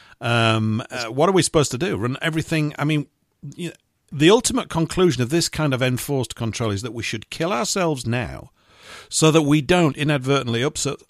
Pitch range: 110-155 Hz